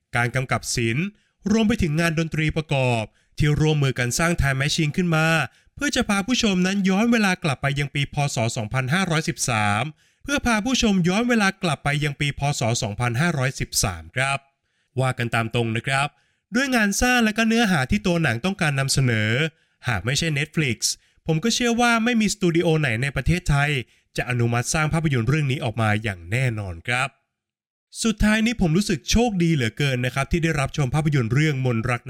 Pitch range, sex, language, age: 120-170 Hz, male, Thai, 20-39